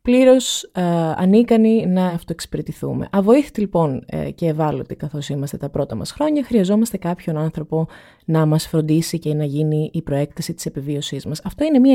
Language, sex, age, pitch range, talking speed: Greek, female, 20-39, 150-200 Hz, 165 wpm